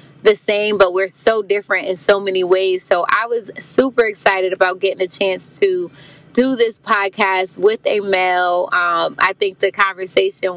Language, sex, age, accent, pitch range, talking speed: English, female, 20-39, American, 185-220 Hz, 175 wpm